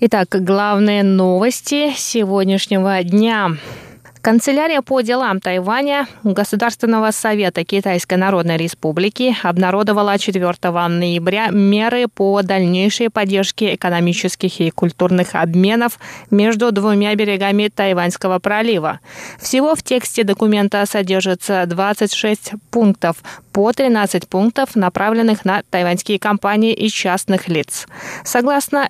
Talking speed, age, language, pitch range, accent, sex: 100 wpm, 20-39, Russian, 185-225 Hz, native, female